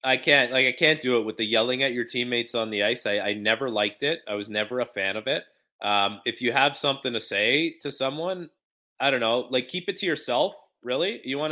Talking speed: 250 wpm